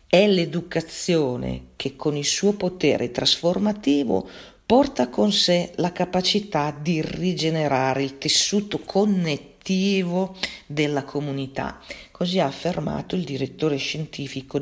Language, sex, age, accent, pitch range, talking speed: Italian, female, 40-59, native, 140-185 Hz, 105 wpm